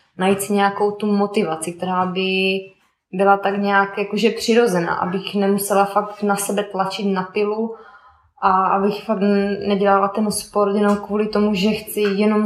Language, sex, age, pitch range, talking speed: Czech, female, 20-39, 190-210 Hz, 155 wpm